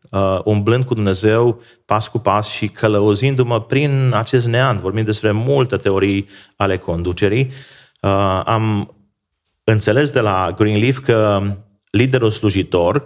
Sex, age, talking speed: male, 30-49, 125 wpm